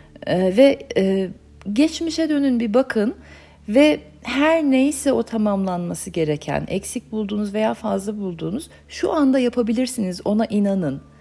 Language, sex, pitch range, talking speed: Turkish, female, 185-245 Hz, 125 wpm